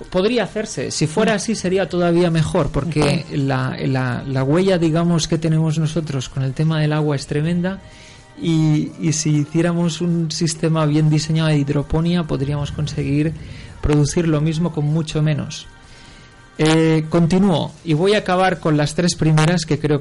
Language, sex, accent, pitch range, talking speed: Spanish, male, Spanish, 135-165 Hz, 160 wpm